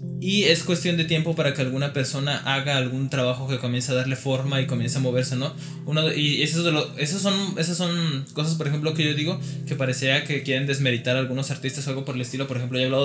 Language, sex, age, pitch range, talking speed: Spanish, male, 20-39, 130-155 Hz, 250 wpm